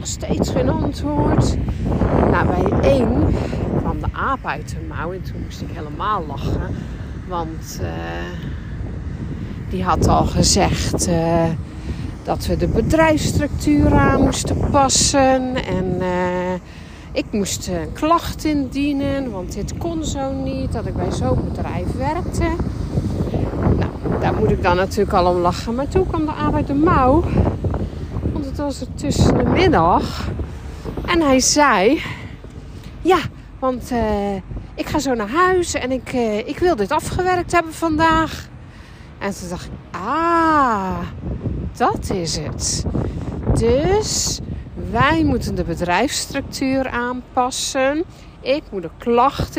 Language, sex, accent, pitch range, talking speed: Dutch, female, Dutch, 185-310 Hz, 135 wpm